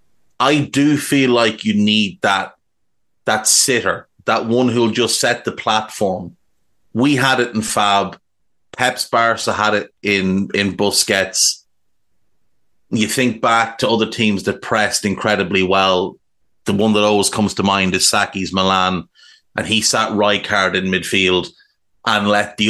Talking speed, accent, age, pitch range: 150 wpm, Irish, 30-49, 100-115 Hz